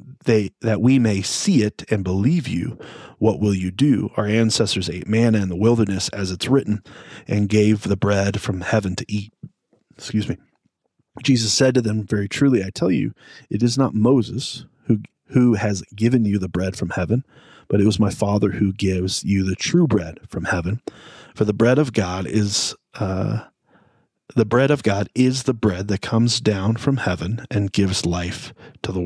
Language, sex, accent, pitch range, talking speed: English, male, American, 100-120 Hz, 190 wpm